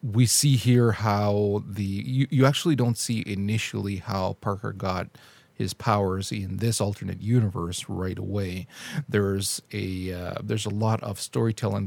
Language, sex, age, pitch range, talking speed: English, male, 40-59, 100-125 Hz, 150 wpm